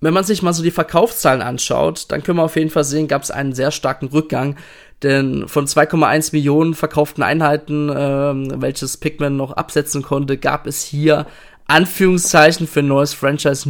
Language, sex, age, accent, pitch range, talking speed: German, male, 20-39, German, 140-165 Hz, 180 wpm